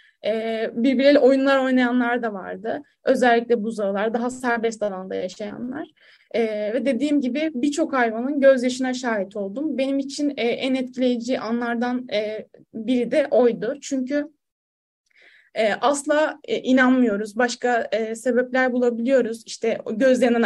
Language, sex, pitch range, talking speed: Turkish, female, 230-270 Hz, 115 wpm